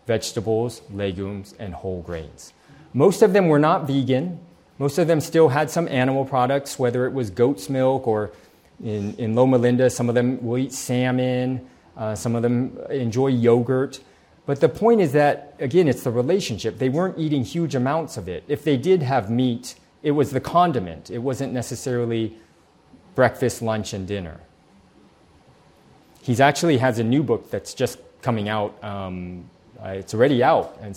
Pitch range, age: 100-135 Hz, 30-49